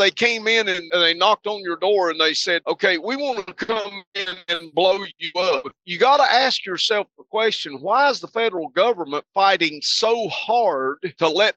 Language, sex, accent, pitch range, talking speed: English, male, American, 150-200 Hz, 200 wpm